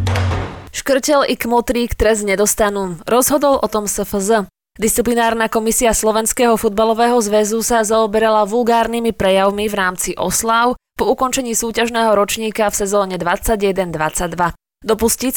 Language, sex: Slovak, female